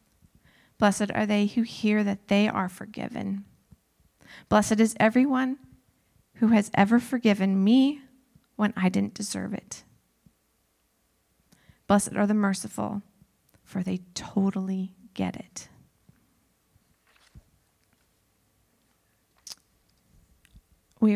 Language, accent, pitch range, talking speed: English, American, 185-220 Hz, 90 wpm